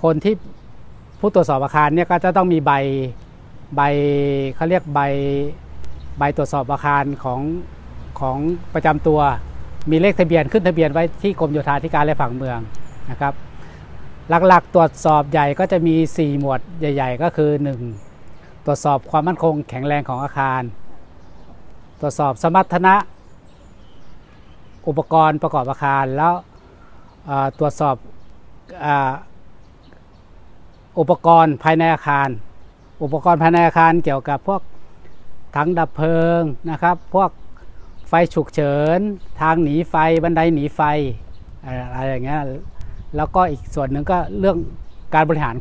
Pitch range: 125-165 Hz